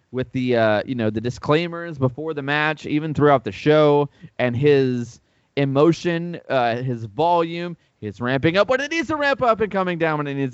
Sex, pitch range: male, 115-160 Hz